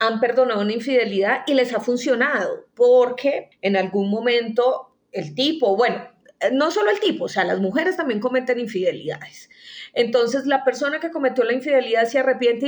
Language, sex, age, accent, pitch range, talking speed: Spanish, female, 30-49, Colombian, 215-270 Hz, 165 wpm